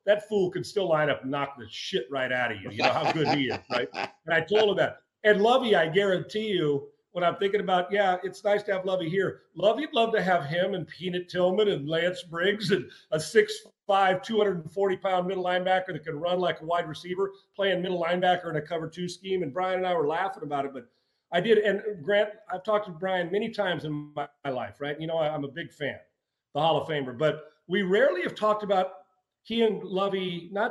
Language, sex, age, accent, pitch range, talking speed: English, male, 40-59, American, 165-200 Hz, 230 wpm